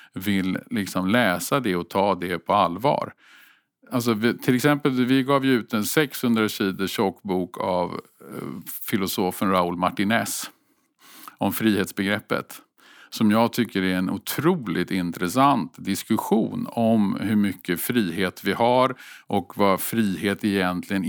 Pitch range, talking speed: 95-130 Hz, 120 wpm